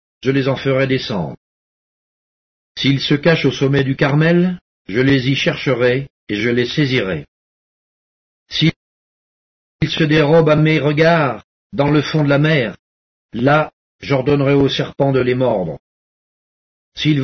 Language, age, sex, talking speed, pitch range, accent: English, 50-69, male, 140 wpm, 125-150 Hz, French